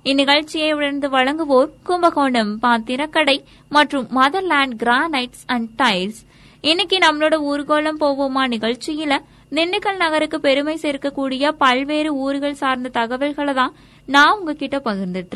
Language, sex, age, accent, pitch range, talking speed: Tamil, female, 20-39, native, 240-285 Hz, 100 wpm